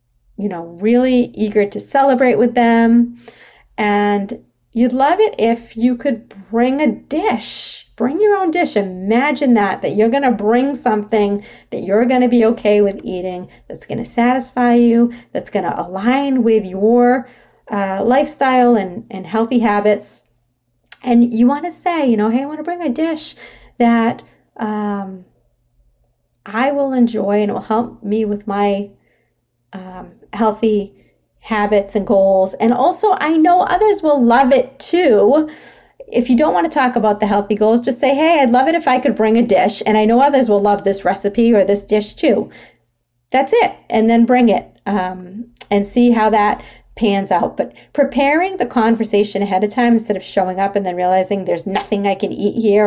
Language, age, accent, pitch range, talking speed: English, 40-59, American, 200-255 Hz, 185 wpm